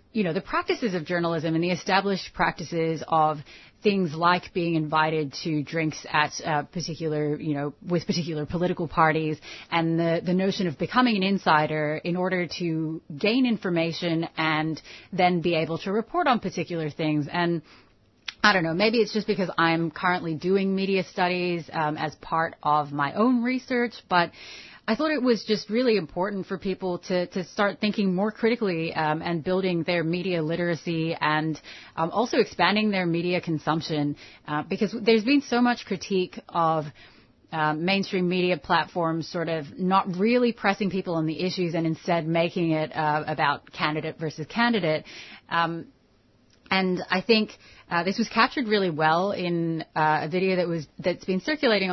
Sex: female